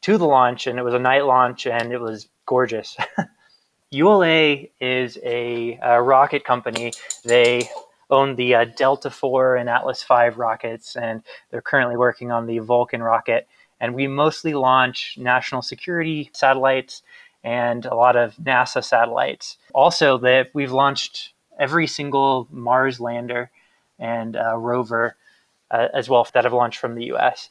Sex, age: male, 20-39